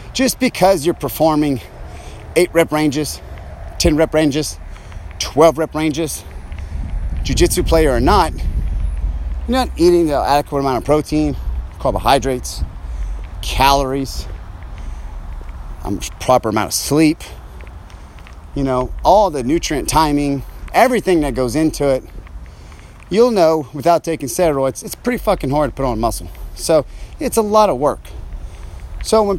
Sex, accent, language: male, American, English